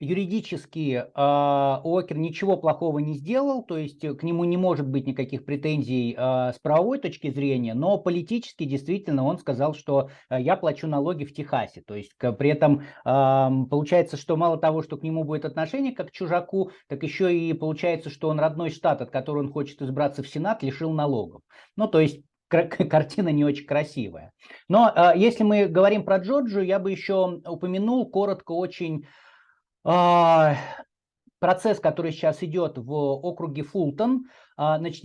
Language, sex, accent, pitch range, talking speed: Russian, male, native, 140-185 Hz, 165 wpm